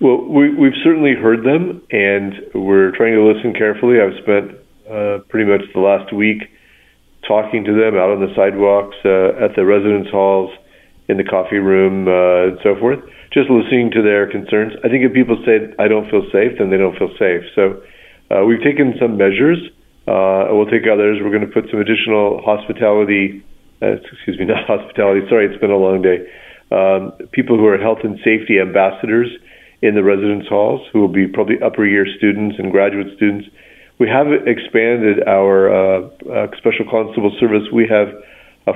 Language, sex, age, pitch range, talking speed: English, male, 40-59, 95-110 Hz, 185 wpm